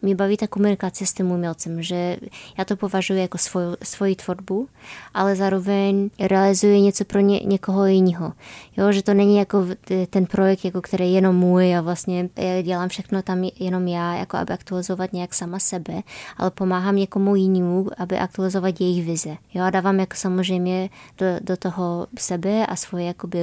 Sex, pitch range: female, 180-195 Hz